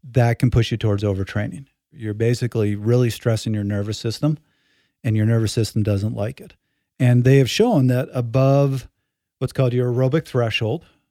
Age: 50-69